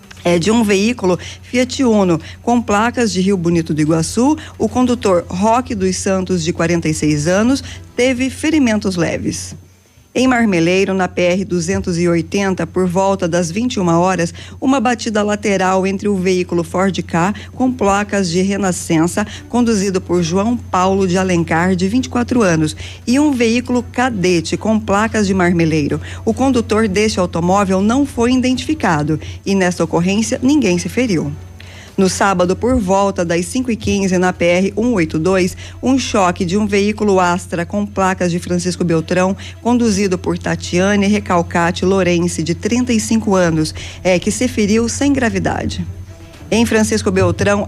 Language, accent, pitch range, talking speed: Portuguese, Brazilian, 175-220 Hz, 140 wpm